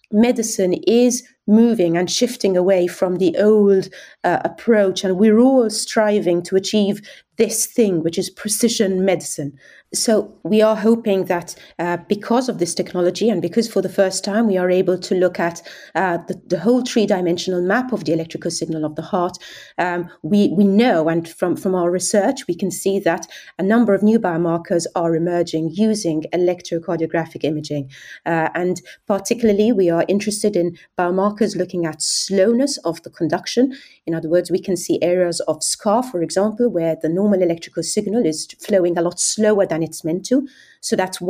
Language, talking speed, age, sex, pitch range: English, 180 wpm, 30-49, female, 170-215 Hz